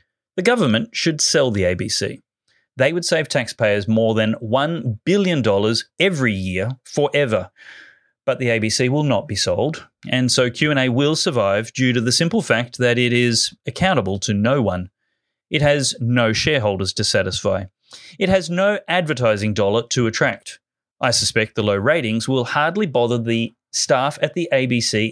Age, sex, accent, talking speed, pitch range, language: 30-49, male, Australian, 160 wpm, 115-165 Hz, English